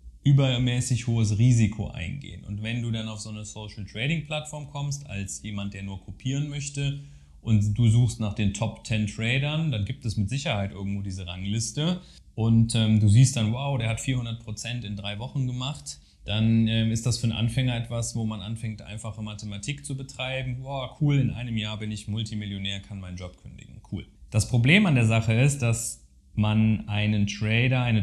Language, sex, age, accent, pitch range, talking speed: German, male, 30-49, German, 100-120 Hz, 180 wpm